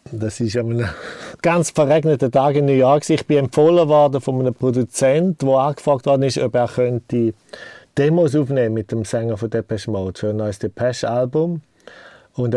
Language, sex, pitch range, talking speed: German, male, 120-145 Hz, 170 wpm